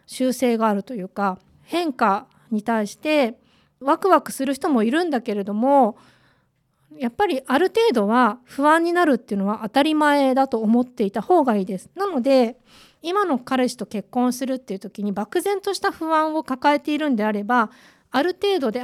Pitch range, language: 225-305 Hz, Japanese